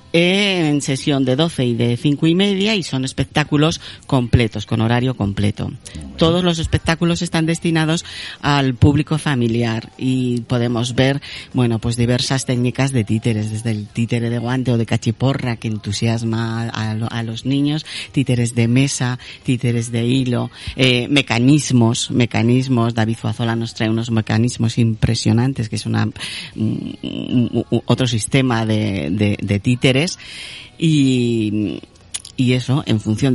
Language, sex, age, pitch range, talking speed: Spanish, female, 40-59, 115-140 Hz, 140 wpm